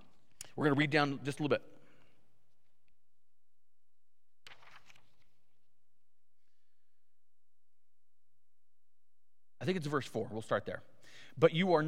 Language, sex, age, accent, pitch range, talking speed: English, male, 40-59, American, 135-175 Hz, 100 wpm